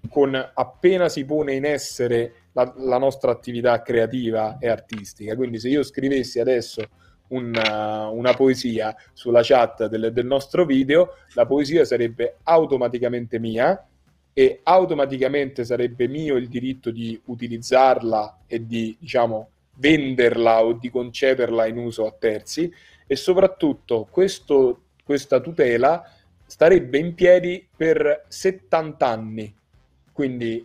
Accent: native